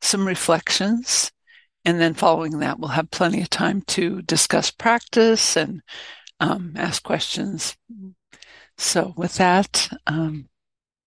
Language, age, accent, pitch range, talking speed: English, 60-79, American, 170-210 Hz, 120 wpm